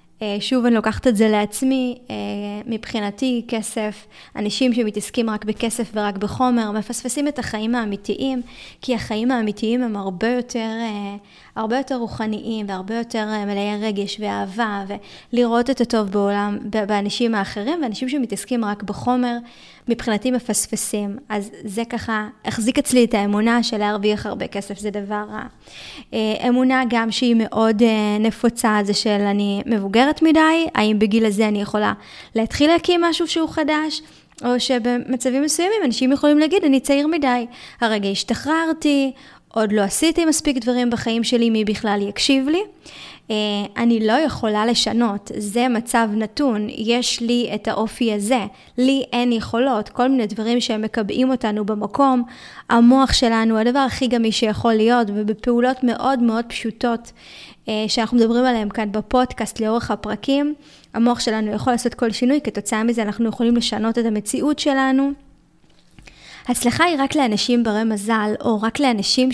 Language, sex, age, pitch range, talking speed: Hebrew, female, 20-39, 215-255 Hz, 140 wpm